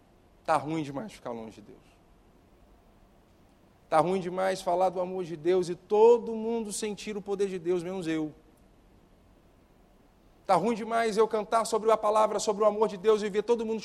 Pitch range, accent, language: 140-225 Hz, Brazilian, Portuguese